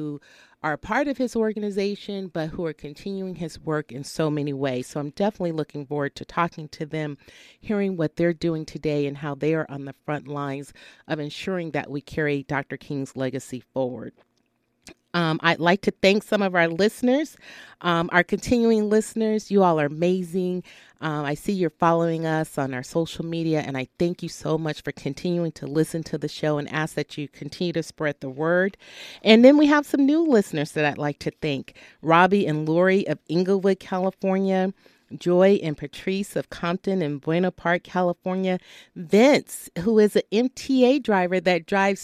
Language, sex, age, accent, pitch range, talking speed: English, female, 40-59, American, 150-195 Hz, 185 wpm